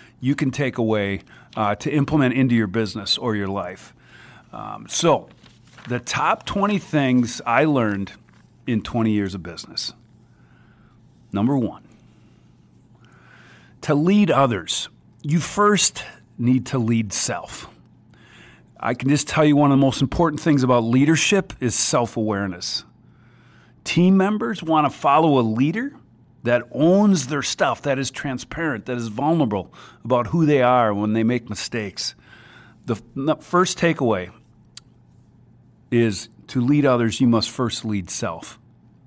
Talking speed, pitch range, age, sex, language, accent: 135 wpm, 115-150 Hz, 40-59, male, English, American